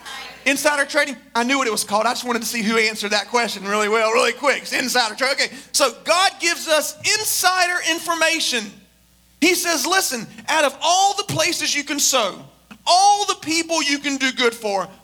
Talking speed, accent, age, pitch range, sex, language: 195 wpm, American, 40-59, 230-310 Hz, male, English